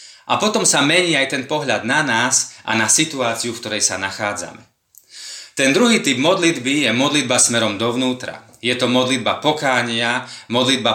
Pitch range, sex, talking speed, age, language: 115-140 Hz, male, 160 wpm, 30-49, Slovak